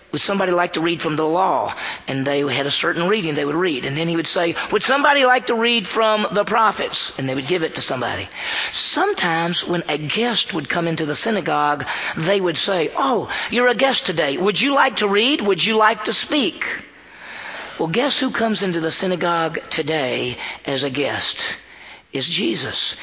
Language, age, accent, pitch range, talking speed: English, 40-59, American, 155-215 Hz, 200 wpm